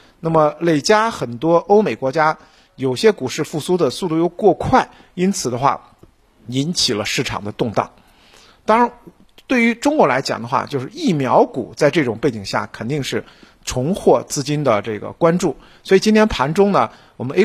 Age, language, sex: 50-69, Chinese, male